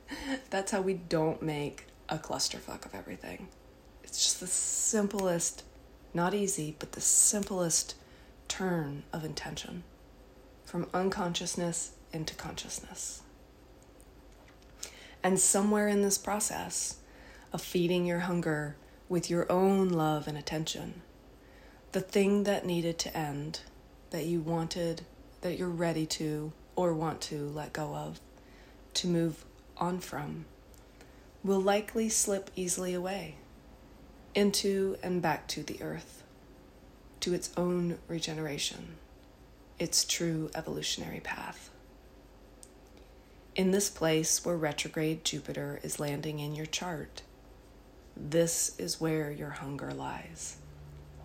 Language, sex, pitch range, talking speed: English, female, 150-185 Hz, 115 wpm